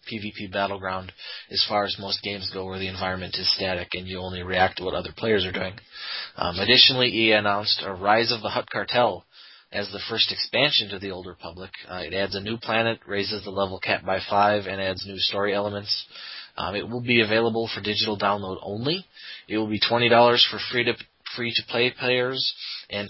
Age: 30-49